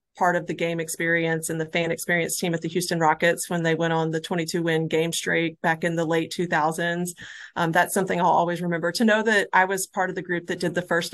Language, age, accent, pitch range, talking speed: English, 30-49, American, 165-180 Hz, 250 wpm